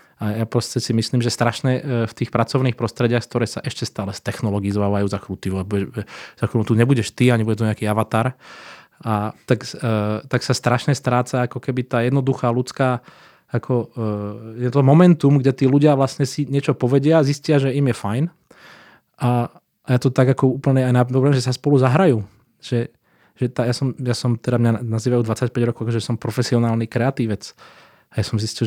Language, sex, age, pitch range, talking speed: Czech, male, 20-39, 115-130 Hz, 180 wpm